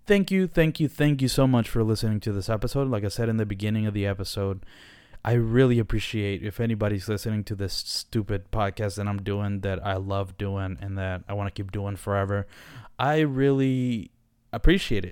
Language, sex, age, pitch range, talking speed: English, male, 20-39, 100-130 Hz, 200 wpm